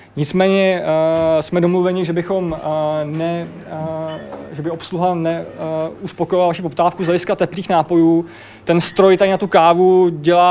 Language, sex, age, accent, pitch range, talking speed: Czech, male, 20-39, native, 155-180 Hz, 155 wpm